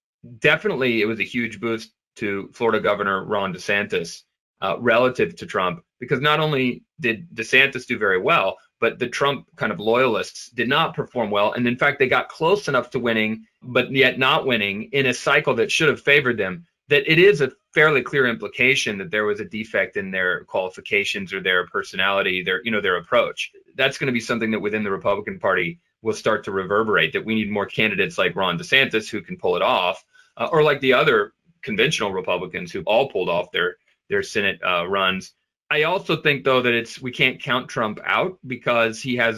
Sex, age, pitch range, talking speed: male, 30-49, 110-150 Hz, 205 wpm